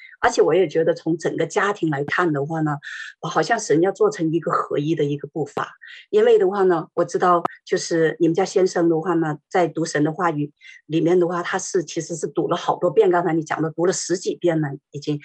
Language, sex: Chinese, female